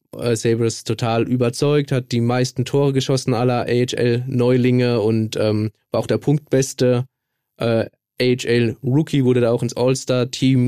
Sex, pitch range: male, 110-130 Hz